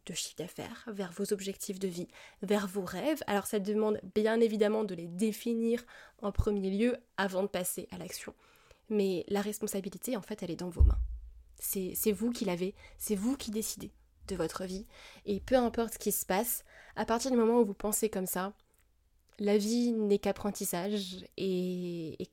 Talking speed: 185 wpm